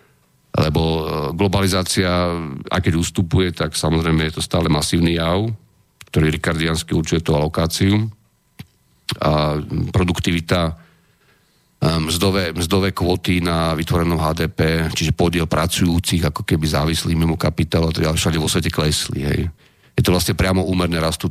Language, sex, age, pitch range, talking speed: Slovak, male, 40-59, 80-90 Hz, 130 wpm